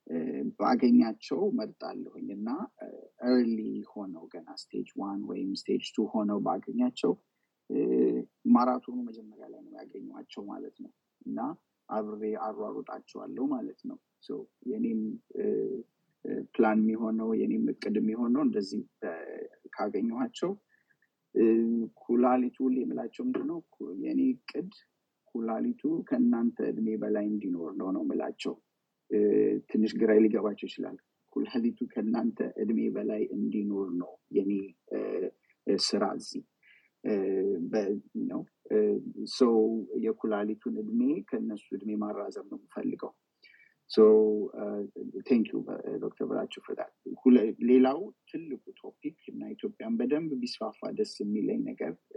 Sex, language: male, English